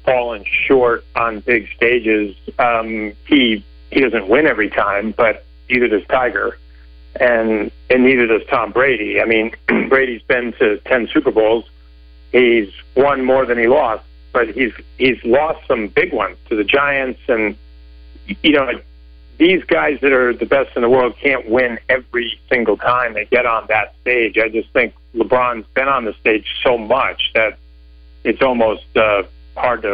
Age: 50-69